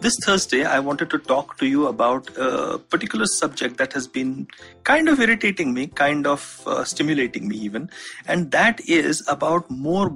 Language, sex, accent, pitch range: English, male, Indian, 125-170 Hz